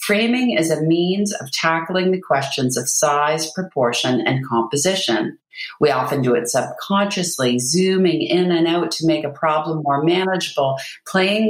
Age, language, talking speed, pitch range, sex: 40-59, English, 150 wpm, 145-180 Hz, female